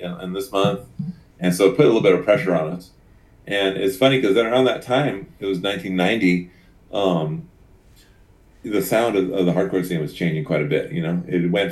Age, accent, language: 30-49, American, English